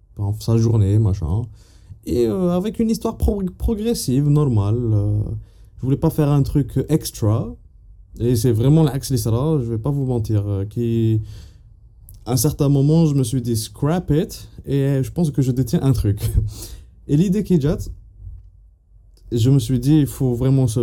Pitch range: 110-155 Hz